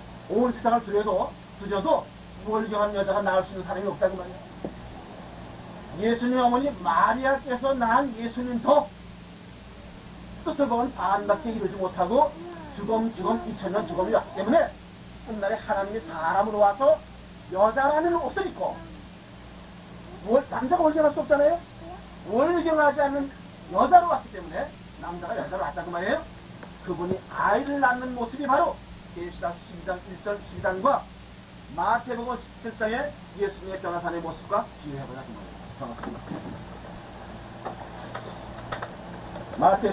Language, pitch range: Korean, 180-245 Hz